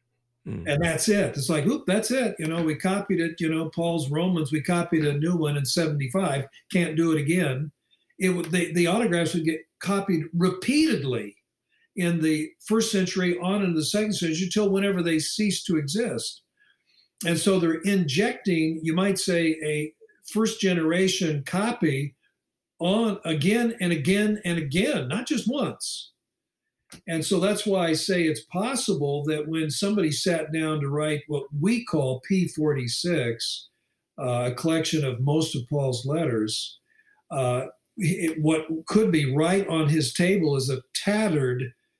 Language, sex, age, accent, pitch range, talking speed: English, male, 50-69, American, 150-190 Hz, 155 wpm